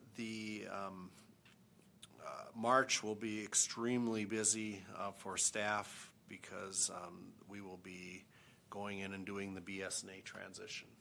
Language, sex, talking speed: English, male, 125 wpm